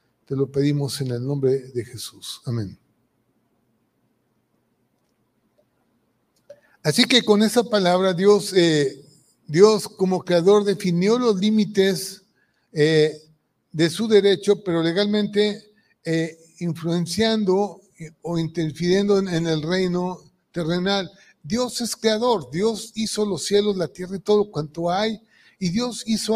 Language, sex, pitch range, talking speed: Spanish, male, 170-210 Hz, 120 wpm